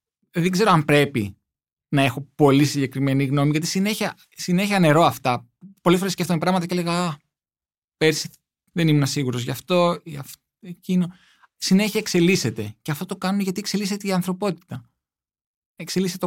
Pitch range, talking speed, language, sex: 125-180 Hz, 150 wpm, Greek, male